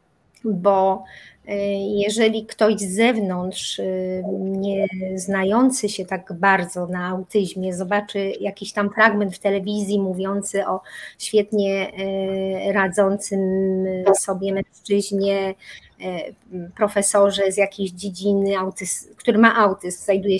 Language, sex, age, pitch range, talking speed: Polish, female, 30-49, 190-220 Hz, 95 wpm